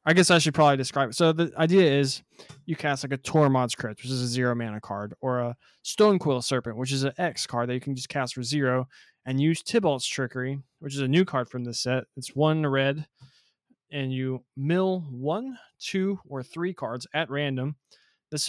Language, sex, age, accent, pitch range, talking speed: English, male, 20-39, American, 125-155 Hz, 215 wpm